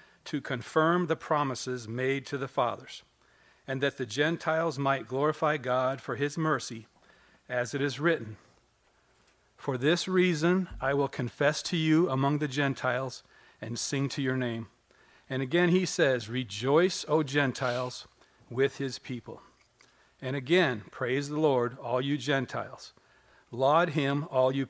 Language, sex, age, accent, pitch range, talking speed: English, male, 40-59, American, 130-155 Hz, 145 wpm